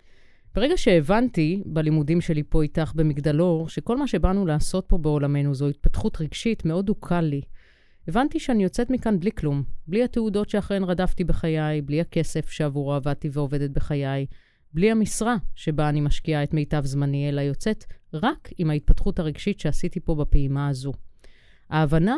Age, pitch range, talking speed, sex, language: 30-49, 145-205 Hz, 150 wpm, female, Hebrew